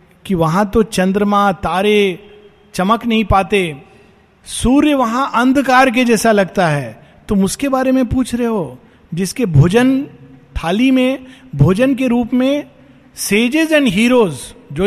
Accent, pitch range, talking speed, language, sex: native, 165-230 Hz, 135 wpm, Hindi, male